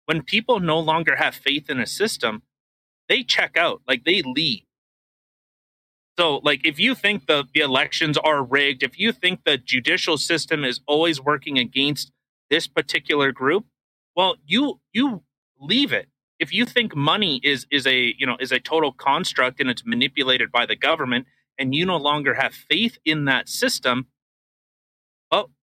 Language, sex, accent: English, male, American